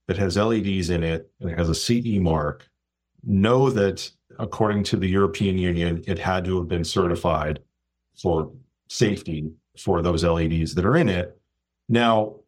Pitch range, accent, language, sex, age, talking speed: 85-110 Hz, American, English, male, 40-59, 165 wpm